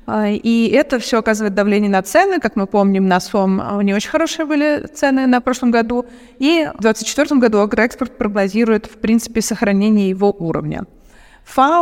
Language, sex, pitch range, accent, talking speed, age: Russian, female, 195-240 Hz, native, 160 wpm, 30-49